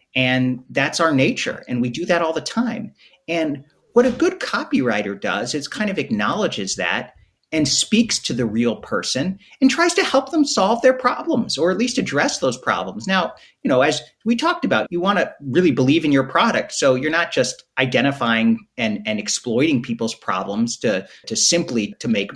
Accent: American